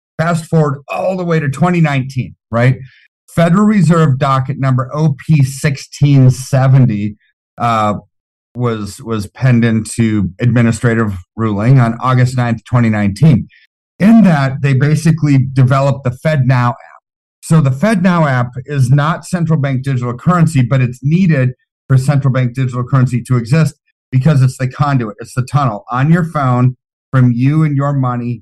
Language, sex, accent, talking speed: English, male, American, 140 wpm